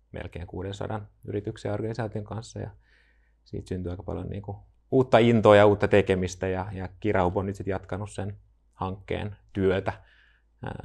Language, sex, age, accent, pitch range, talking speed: Finnish, male, 30-49, native, 95-105 Hz, 150 wpm